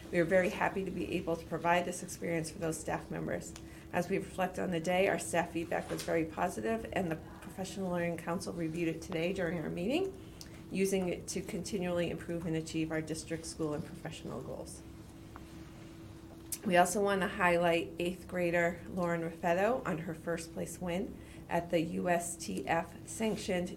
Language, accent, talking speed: English, American, 175 wpm